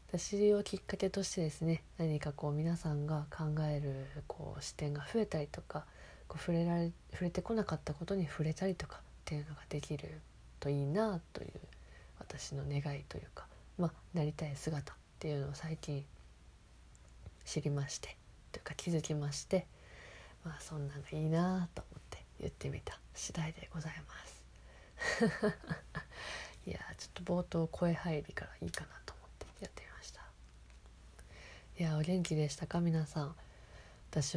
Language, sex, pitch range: Japanese, female, 140-170 Hz